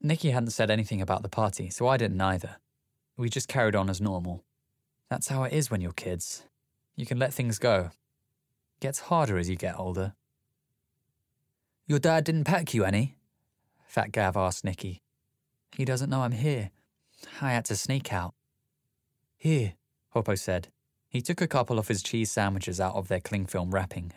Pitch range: 95-130 Hz